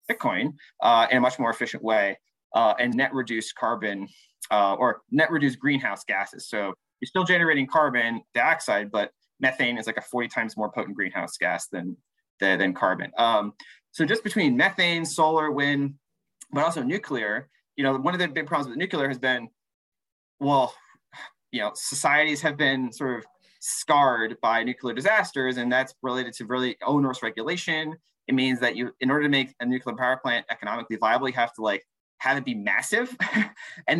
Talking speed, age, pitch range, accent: 180 wpm, 20-39, 120-155 Hz, American